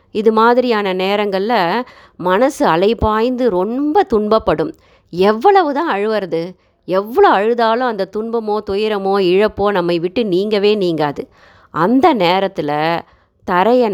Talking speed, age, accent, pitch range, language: 95 wpm, 30-49, native, 170-220 Hz, Tamil